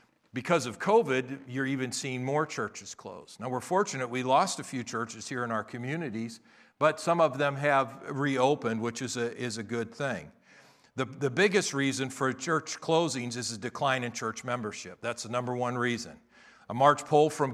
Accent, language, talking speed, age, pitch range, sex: American, English, 190 wpm, 50-69, 110-140 Hz, male